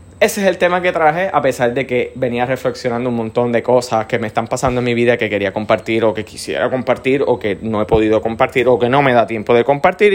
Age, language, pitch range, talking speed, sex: 20-39, Spanish, 115-155 Hz, 260 wpm, male